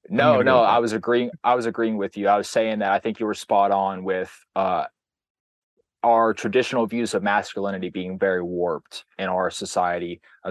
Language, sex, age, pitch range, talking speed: English, male, 20-39, 90-105 Hz, 195 wpm